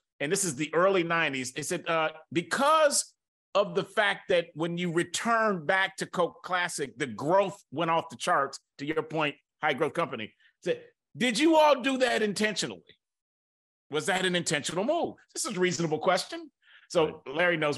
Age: 40-59